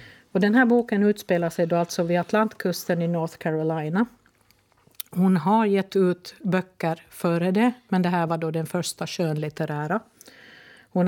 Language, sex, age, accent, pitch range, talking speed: Swedish, female, 50-69, native, 170-215 Hz, 155 wpm